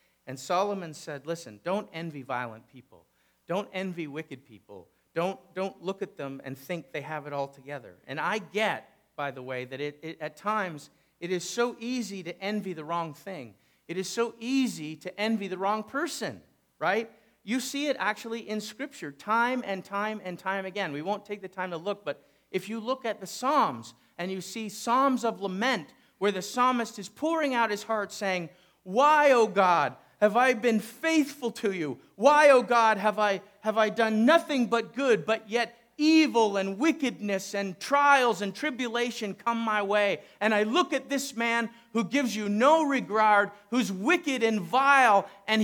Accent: American